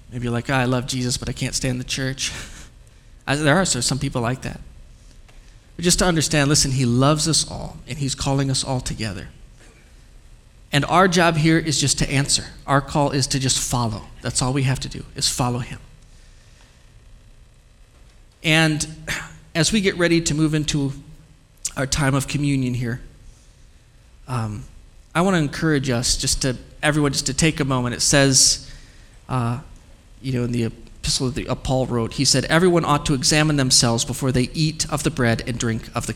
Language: English